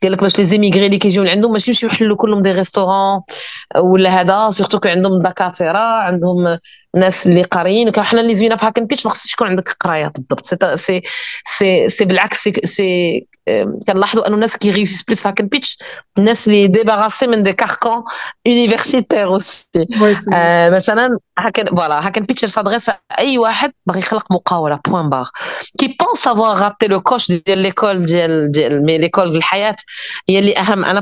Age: 30-49